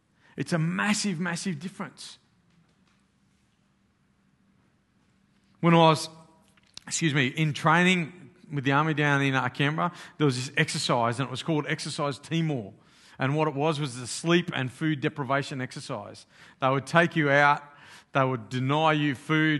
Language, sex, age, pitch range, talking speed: English, male, 50-69, 140-175 Hz, 155 wpm